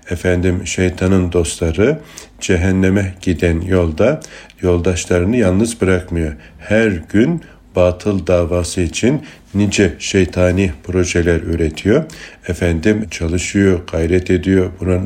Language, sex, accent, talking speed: Turkish, male, native, 90 wpm